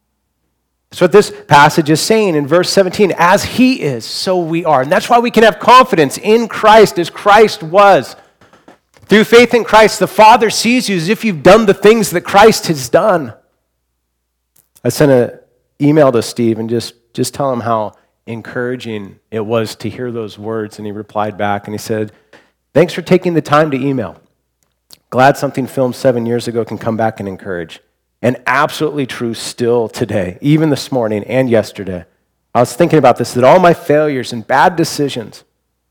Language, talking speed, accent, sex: English, 185 wpm, American, male